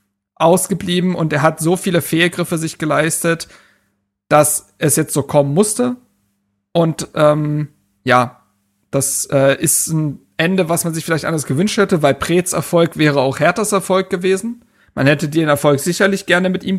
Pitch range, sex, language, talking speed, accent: 150-180 Hz, male, German, 165 wpm, German